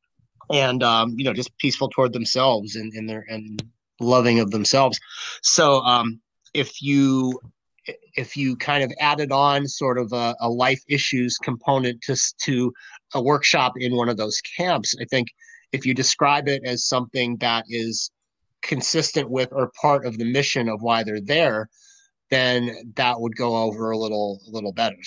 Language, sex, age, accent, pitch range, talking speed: English, male, 30-49, American, 115-135 Hz, 170 wpm